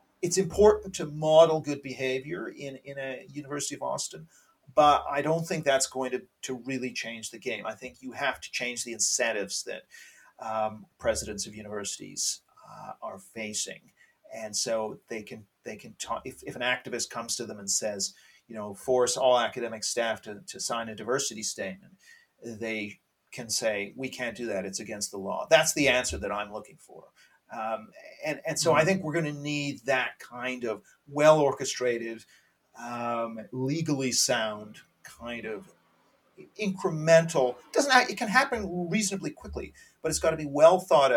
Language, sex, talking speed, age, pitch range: English, male, 180 wpm, 40-59, 115-150 Hz